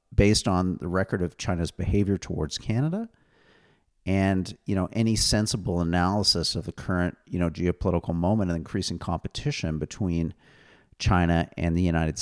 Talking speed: 145 wpm